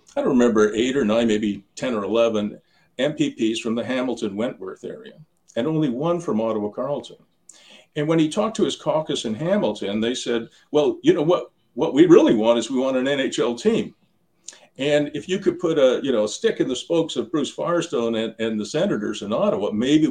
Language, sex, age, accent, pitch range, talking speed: English, male, 50-69, American, 115-165 Hz, 205 wpm